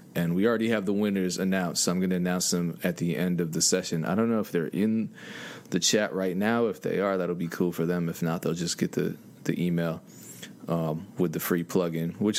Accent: American